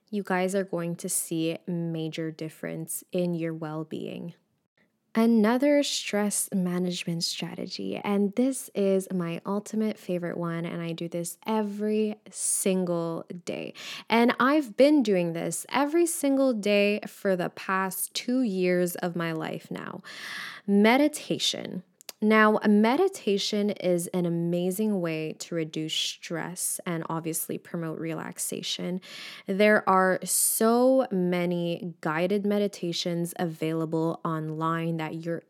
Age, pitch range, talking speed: 10-29, 170-210 Hz, 120 wpm